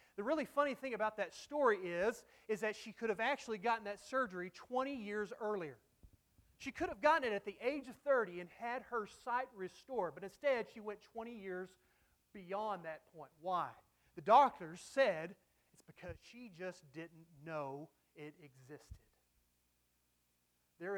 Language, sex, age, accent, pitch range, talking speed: English, male, 30-49, American, 160-220 Hz, 165 wpm